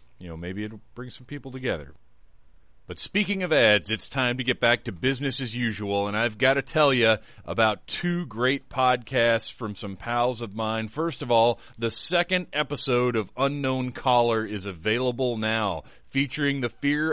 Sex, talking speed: male, 180 wpm